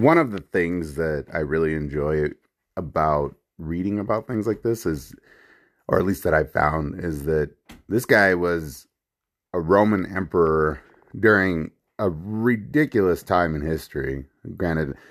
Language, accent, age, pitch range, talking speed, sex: English, American, 30-49, 75-100 Hz, 145 wpm, male